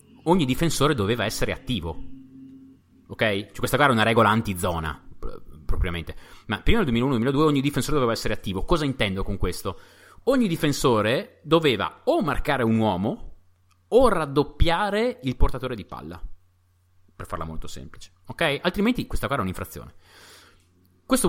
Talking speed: 140 wpm